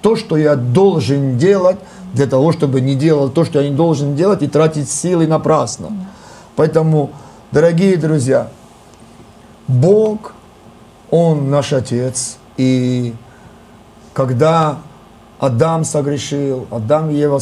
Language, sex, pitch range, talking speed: Russian, male, 135-165 Hz, 115 wpm